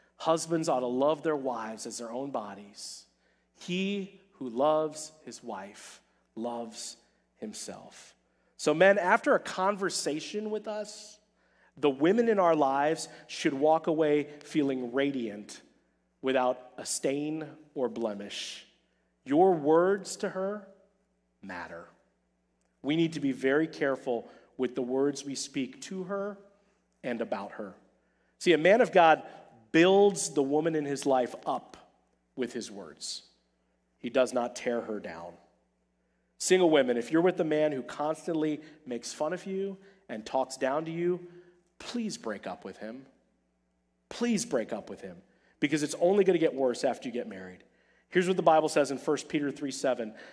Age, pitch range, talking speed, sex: 40-59, 120-175 Hz, 155 wpm, male